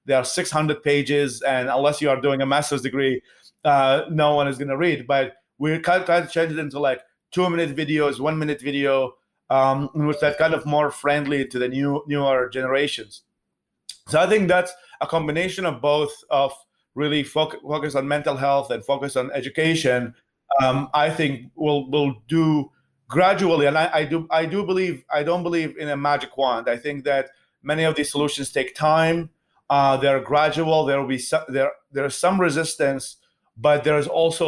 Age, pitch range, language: 30-49, 135-160 Hz, English